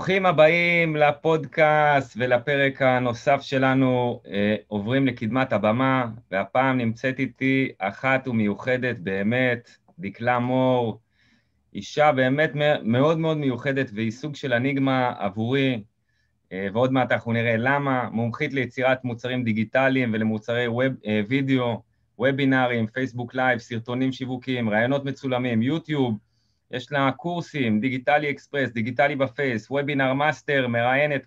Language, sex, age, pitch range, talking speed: Hebrew, male, 30-49, 115-140 Hz, 110 wpm